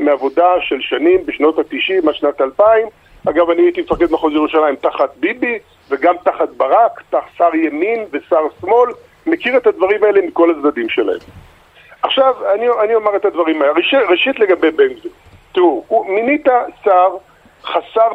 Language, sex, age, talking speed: Hebrew, male, 50-69, 150 wpm